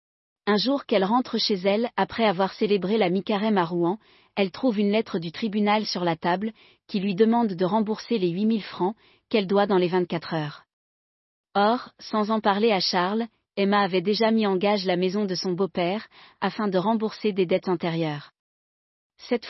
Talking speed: 185 wpm